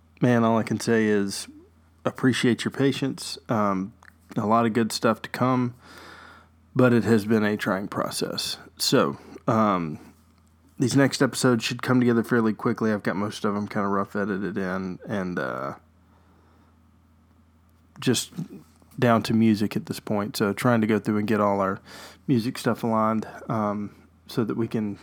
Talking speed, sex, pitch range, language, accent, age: 170 wpm, male, 100-120 Hz, English, American, 20-39